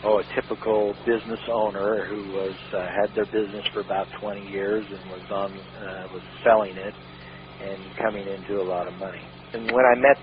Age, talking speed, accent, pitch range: 50-69, 195 wpm, American, 100-115 Hz